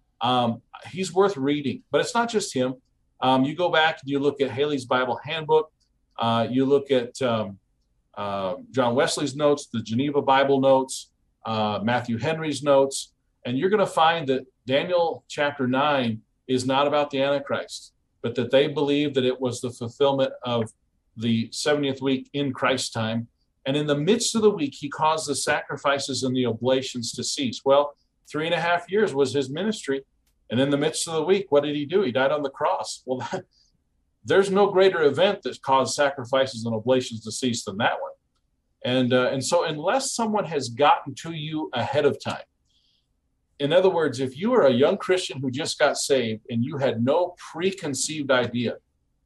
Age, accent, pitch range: 40-59, American, 125-155 Hz